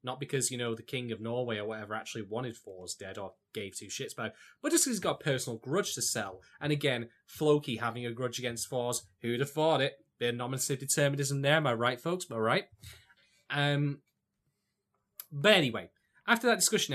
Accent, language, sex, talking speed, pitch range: British, English, male, 200 wpm, 115-140 Hz